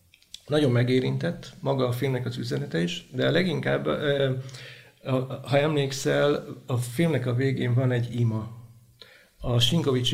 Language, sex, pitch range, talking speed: Hungarian, male, 120-140 Hz, 125 wpm